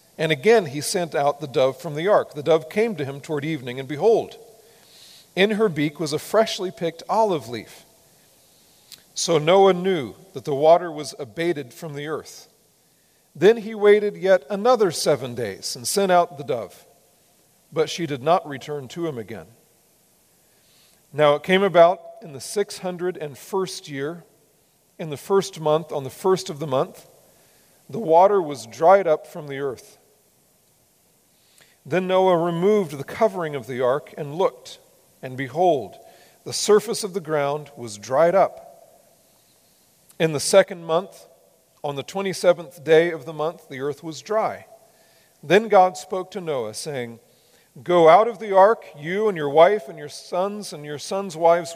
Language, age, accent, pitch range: English, 40-59, American, 150-195 Hz